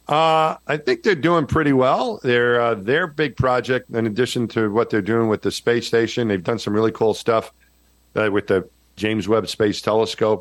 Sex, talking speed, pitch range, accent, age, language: male, 200 wpm, 95-120 Hz, American, 50-69, English